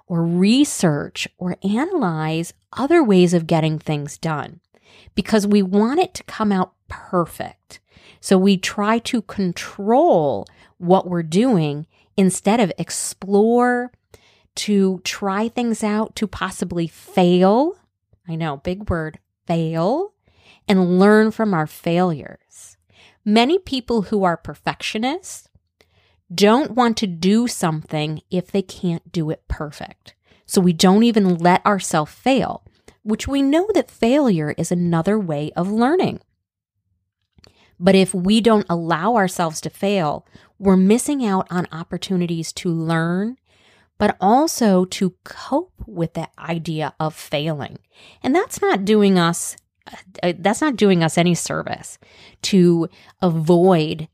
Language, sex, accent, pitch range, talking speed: English, female, American, 165-220 Hz, 130 wpm